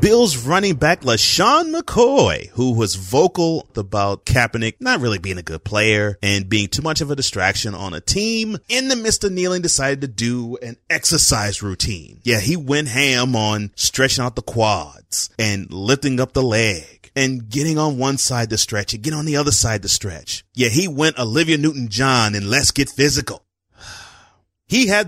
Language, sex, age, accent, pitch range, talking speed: English, male, 30-49, American, 100-135 Hz, 180 wpm